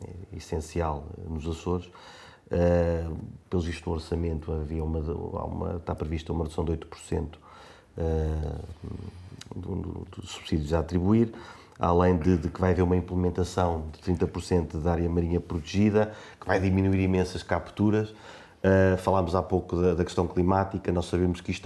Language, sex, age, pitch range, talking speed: Portuguese, male, 30-49, 85-100 Hz, 135 wpm